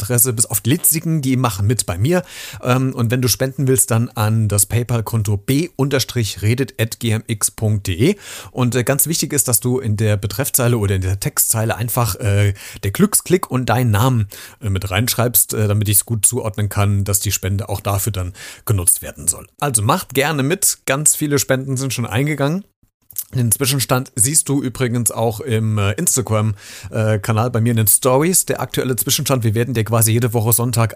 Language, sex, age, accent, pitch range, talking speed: German, male, 40-59, German, 105-130 Hz, 175 wpm